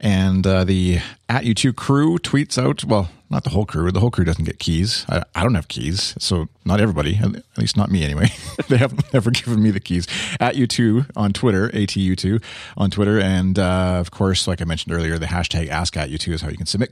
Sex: male